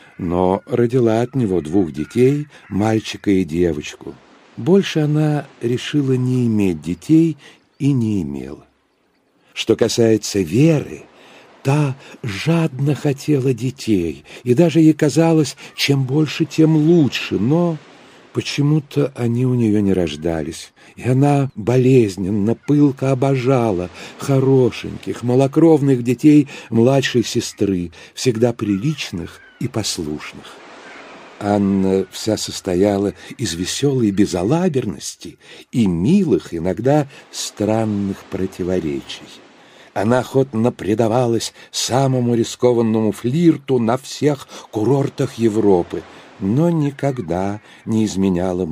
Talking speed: 95 wpm